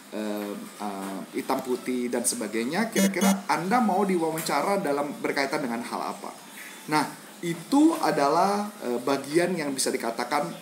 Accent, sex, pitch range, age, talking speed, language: native, male, 125-180 Hz, 30-49, 130 wpm, Indonesian